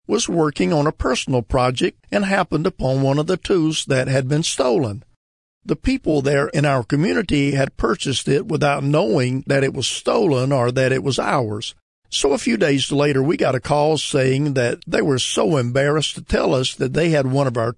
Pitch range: 130-155 Hz